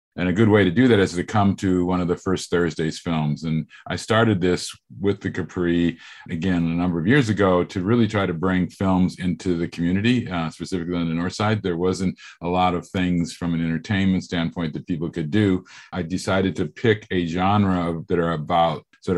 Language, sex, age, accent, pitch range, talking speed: English, male, 50-69, American, 85-95 Hz, 215 wpm